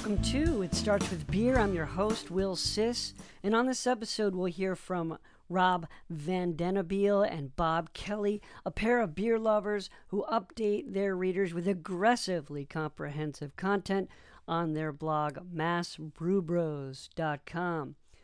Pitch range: 170-200 Hz